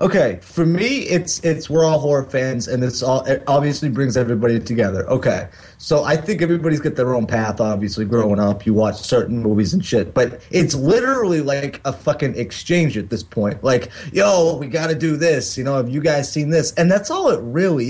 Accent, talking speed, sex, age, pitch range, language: American, 210 wpm, male, 30-49, 115-160 Hz, English